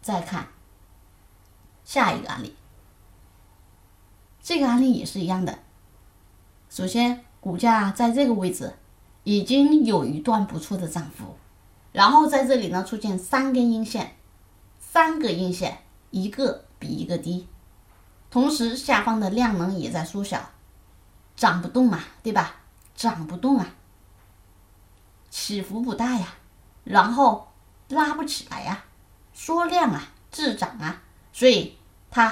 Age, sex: 20-39, female